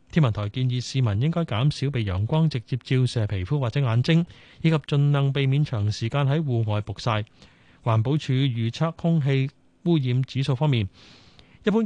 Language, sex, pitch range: Chinese, male, 115-155 Hz